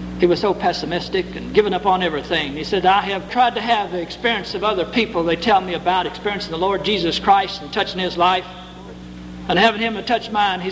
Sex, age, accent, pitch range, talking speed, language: male, 60-79, American, 160-230 Hz, 225 wpm, English